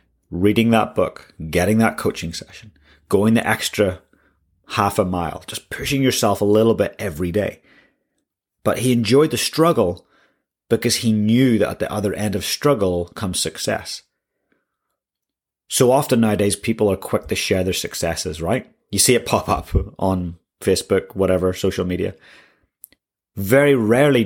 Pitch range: 95-115 Hz